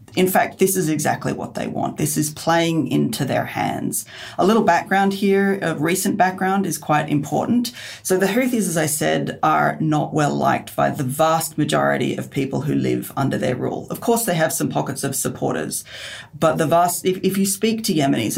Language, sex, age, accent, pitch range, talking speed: English, female, 40-59, Australian, 145-180 Hz, 200 wpm